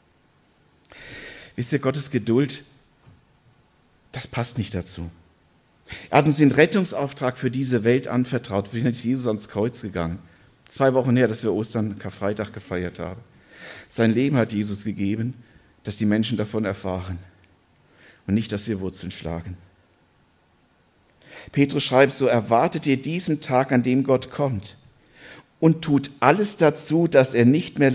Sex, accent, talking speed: male, German, 145 wpm